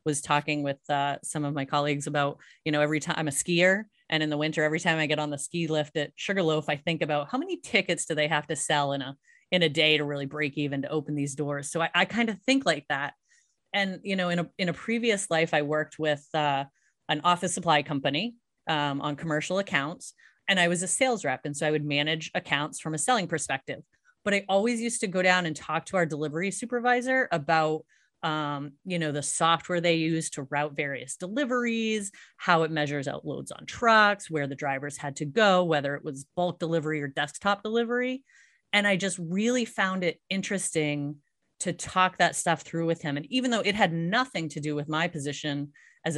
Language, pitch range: English, 150-190 Hz